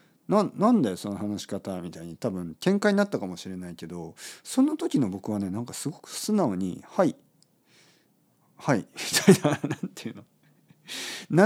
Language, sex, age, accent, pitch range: Japanese, male, 50-69, native, 95-155 Hz